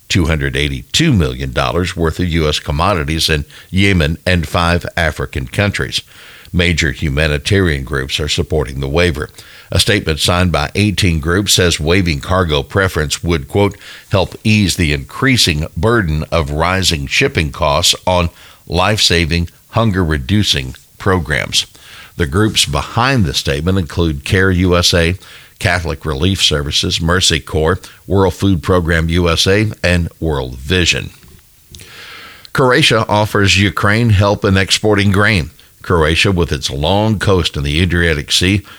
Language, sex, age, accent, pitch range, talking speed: English, male, 60-79, American, 75-100 Hz, 125 wpm